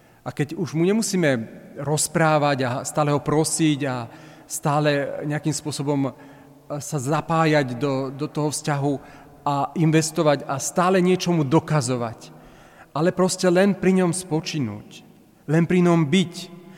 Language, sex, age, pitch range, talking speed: Slovak, male, 40-59, 140-175 Hz, 130 wpm